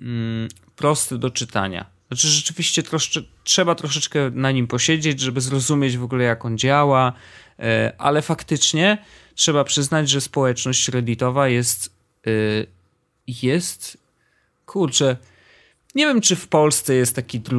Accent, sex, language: native, male, Polish